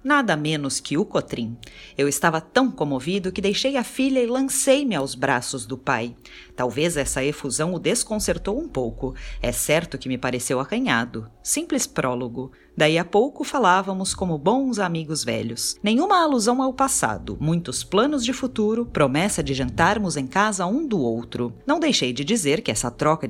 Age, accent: 40-59, Brazilian